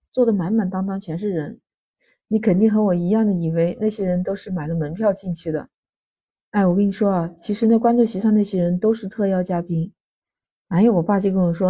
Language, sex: Chinese, female